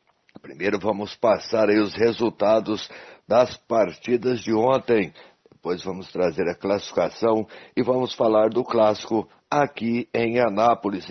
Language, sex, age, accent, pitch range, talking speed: Portuguese, male, 60-79, Brazilian, 105-125 Hz, 125 wpm